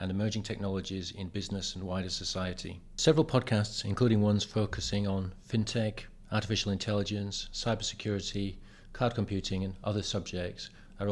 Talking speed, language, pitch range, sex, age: 130 wpm, English, 95-110 Hz, male, 40-59